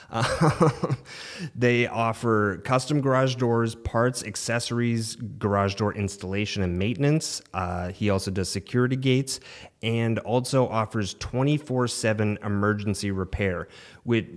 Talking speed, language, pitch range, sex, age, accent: 115 wpm, English, 95-120 Hz, male, 30-49, American